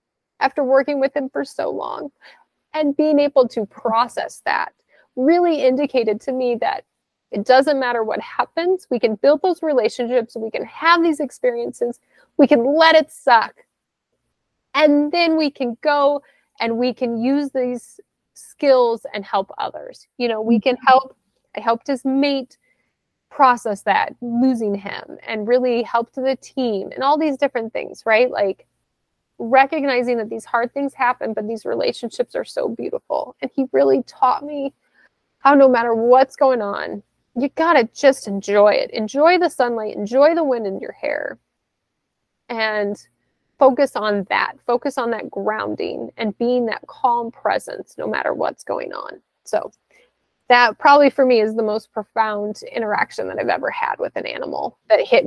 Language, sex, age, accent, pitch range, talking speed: English, female, 30-49, American, 230-290 Hz, 165 wpm